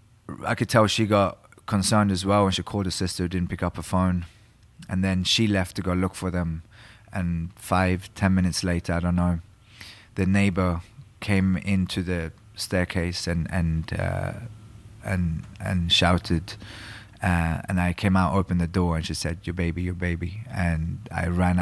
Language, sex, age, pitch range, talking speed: Swedish, male, 20-39, 85-105 Hz, 185 wpm